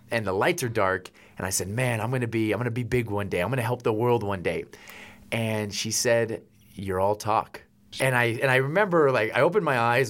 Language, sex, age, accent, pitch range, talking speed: English, male, 30-49, American, 105-135 Hz, 245 wpm